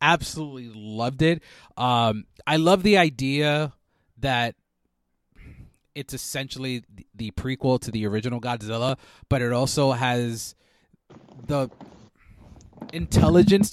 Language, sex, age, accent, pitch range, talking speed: English, male, 30-49, American, 105-130 Hz, 100 wpm